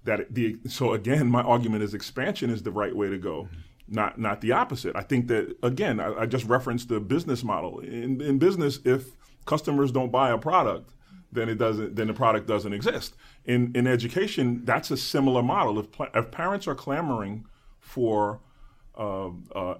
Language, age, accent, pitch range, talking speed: English, 30-49, American, 110-135 Hz, 185 wpm